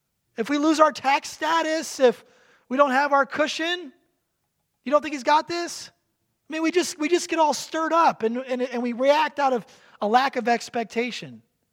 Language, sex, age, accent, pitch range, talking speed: English, male, 30-49, American, 175-240 Hz, 200 wpm